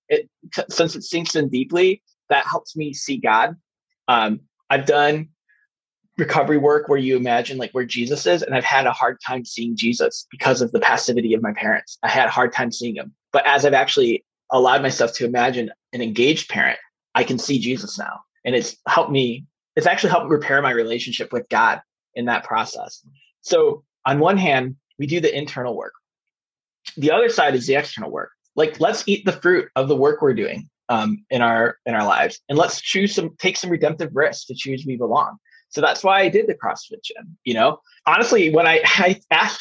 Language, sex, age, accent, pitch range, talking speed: English, male, 20-39, American, 135-205 Hz, 205 wpm